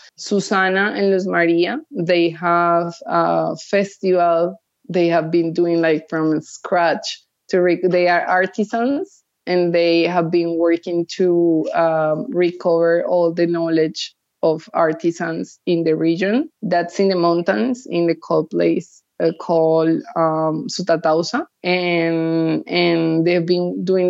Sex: female